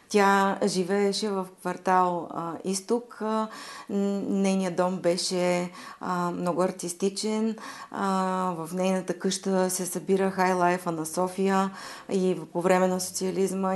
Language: Bulgarian